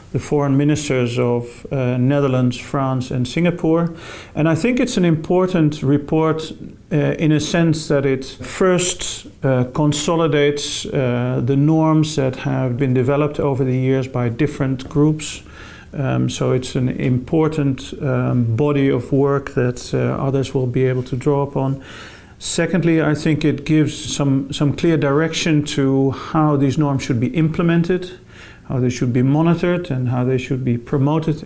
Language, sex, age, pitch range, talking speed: English, male, 40-59, 125-150 Hz, 160 wpm